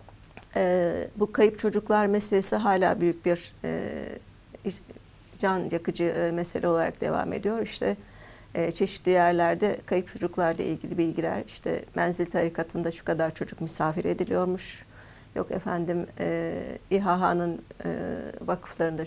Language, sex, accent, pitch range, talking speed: Turkish, female, native, 170-195 Hz, 120 wpm